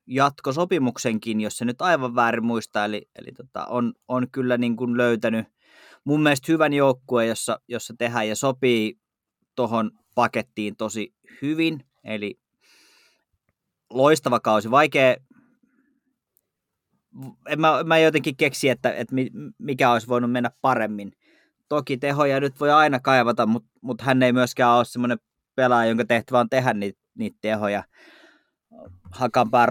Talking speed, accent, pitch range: 135 wpm, native, 110-135 Hz